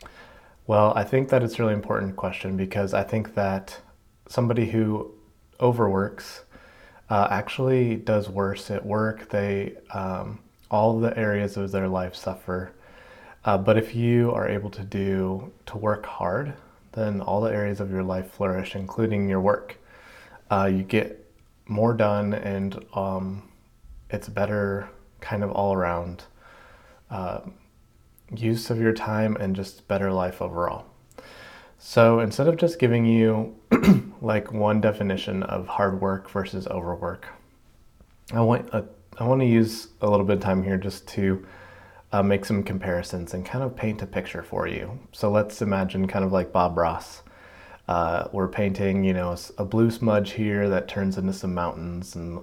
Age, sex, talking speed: 20-39, male, 160 wpm